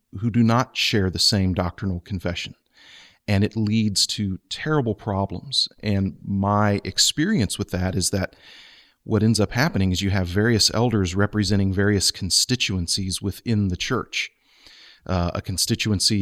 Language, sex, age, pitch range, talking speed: English, male, 40-59, 95-115 Hz, 145 wpm